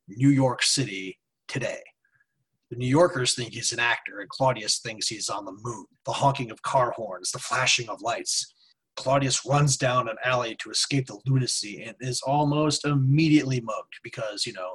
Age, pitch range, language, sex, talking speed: 30-49, 120-140 Hz, English, male, 180 wpm